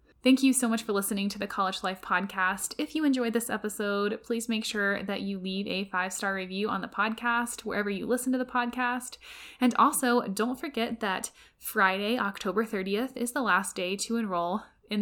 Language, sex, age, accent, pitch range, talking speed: English, female, 10-29, American, 195-240 Hz, 195 wpm